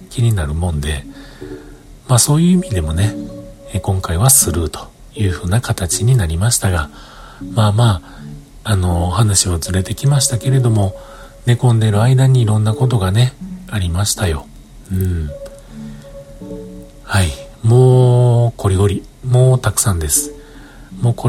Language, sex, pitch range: Japanese, male, 90-135 Hz